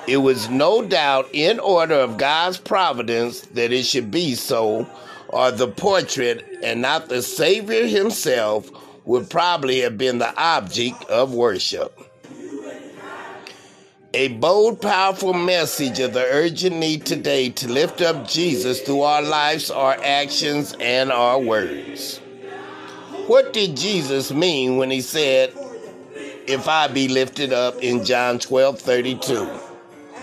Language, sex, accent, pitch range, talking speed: English, male, American, 130-160 Hz, 135 wpm